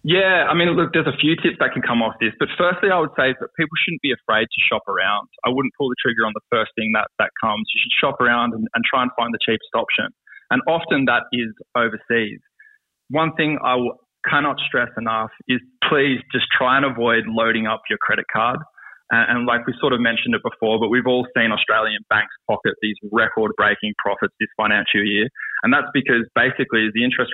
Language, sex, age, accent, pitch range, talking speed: English, male, 20-39, Australian, 110-125 Hz, 220 wpm